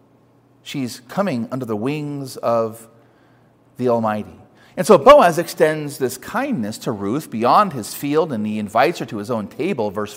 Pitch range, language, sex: 130-185 Hz, English, male